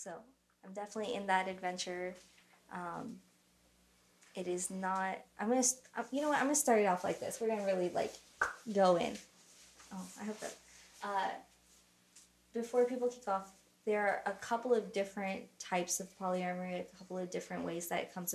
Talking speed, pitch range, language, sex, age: 190 wpm, 170-195 Hz, English, female, 20-39